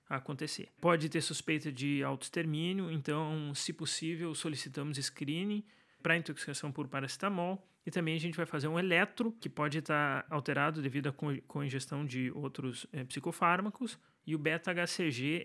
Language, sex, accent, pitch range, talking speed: Portuguese, male, Brazilian, 150-180 Hz, 165 wpm